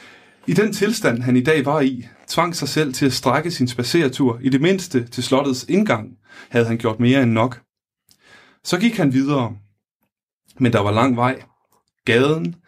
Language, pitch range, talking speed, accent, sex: Danish, 120-145 Hz, 180 wpm, native, male